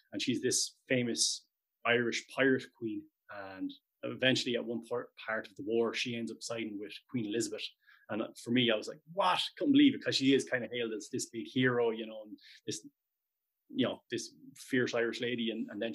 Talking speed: 210 wpm